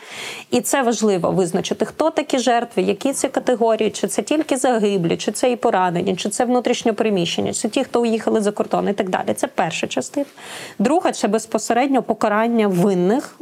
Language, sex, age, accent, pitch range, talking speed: Ukrainian, female, 30-49, native, 200-250 Hz, 190 wpm